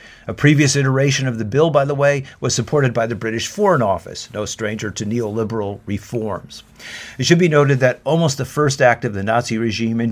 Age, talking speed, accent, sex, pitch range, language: 50-69, 210 wpm, American, male, 110-135 Hz, French